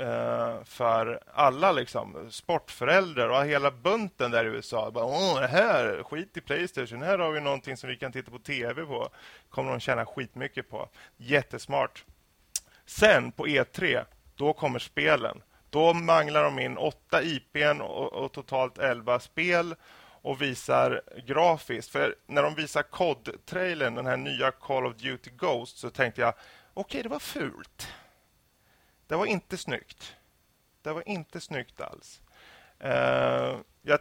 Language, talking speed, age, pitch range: English, 145 wpm, 30-49, 120-165 Hz